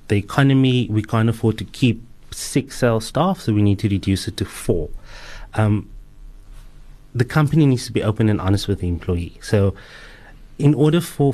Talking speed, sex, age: 180 wpm, male, 30-49